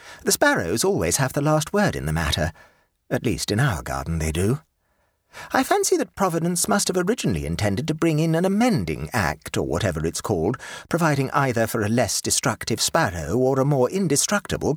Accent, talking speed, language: British, 185 wpm, English